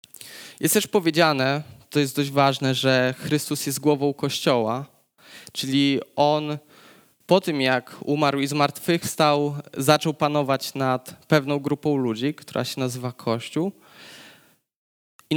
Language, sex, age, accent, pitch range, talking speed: Polish, male, 20-39, native, 130-155 Hz, 120 wpm